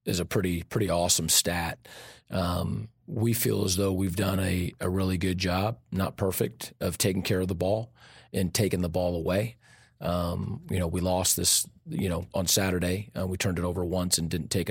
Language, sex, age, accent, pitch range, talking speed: English, male, 40-59, American, 90-100 Hz, 205 wpm